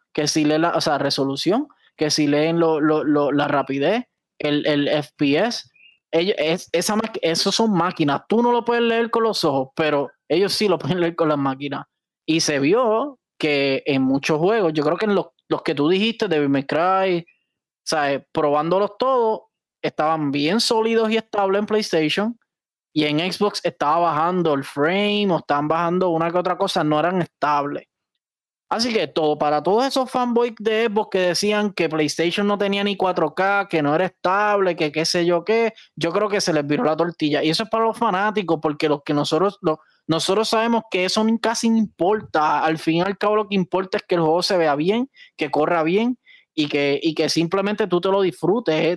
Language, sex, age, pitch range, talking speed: Spanish, male, 20-39, 155-210 Hz, 200 wpm